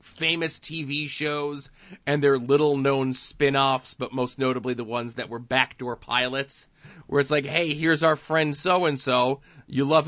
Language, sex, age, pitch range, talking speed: English, male, 20-39, 125-150 Hz, 155 wpm